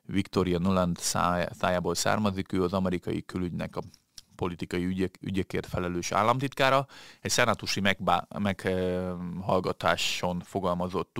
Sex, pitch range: male, 90-105 Hz